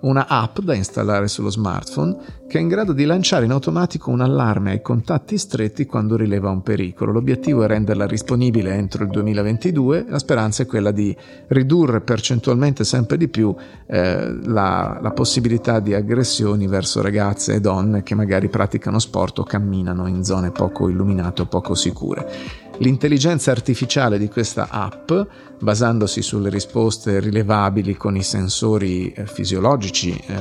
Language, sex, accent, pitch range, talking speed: Italian, male, native, 100-130 Hz, 150 wpm